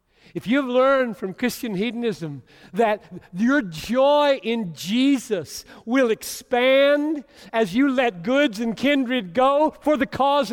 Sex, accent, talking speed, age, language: male, American, 130 wpm, 50-69, English